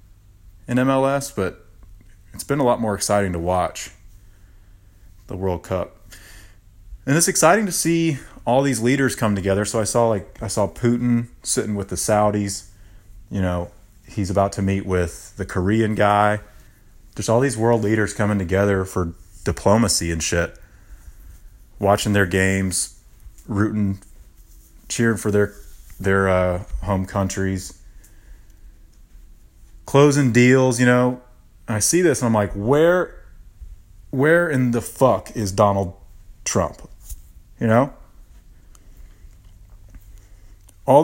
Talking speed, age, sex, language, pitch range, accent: 130 wpm, 30-49, male, English, 95-115 Hz, American